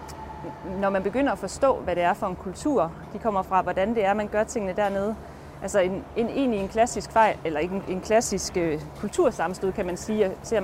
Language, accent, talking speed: Danish, native, 215 wpm